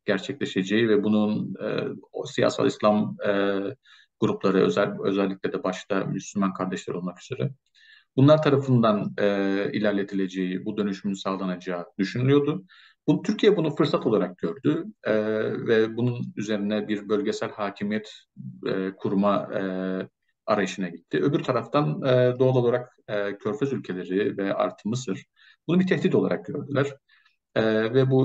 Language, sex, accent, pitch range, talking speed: English, male, Turkish, 100-125 Hz, 130 wpm